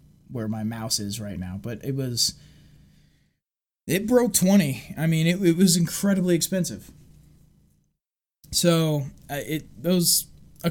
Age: 20-39